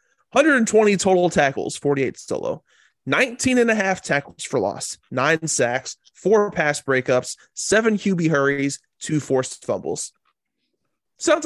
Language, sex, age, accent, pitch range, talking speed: English, male, 20-39, American, 130-165 Hz, 125 wpm